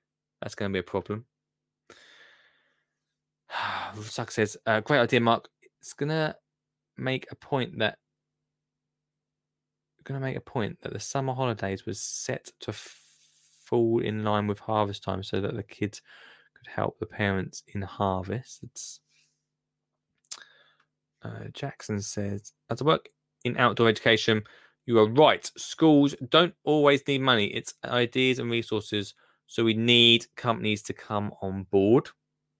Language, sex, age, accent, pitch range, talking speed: English, male, 10-29, British, 105-130 Hz, 145 wpm